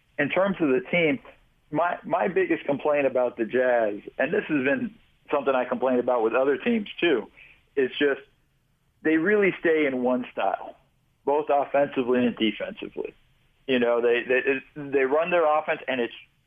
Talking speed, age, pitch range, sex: 170 wpm, 50-69, 130-170 Hz, male